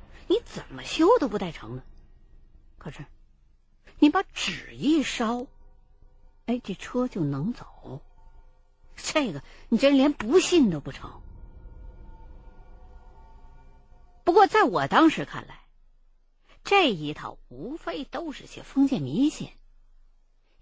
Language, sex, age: Chinese, female, 50-69